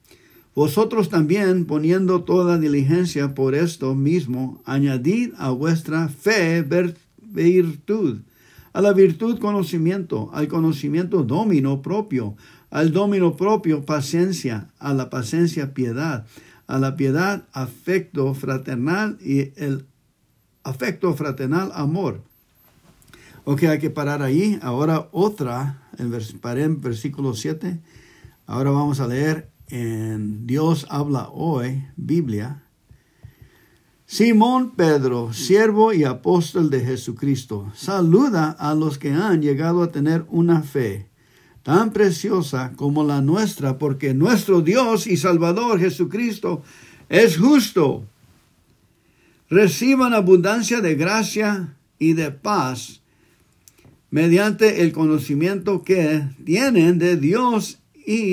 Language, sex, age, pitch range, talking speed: English, male, 60-79, 135-185 Hz, 105 wpm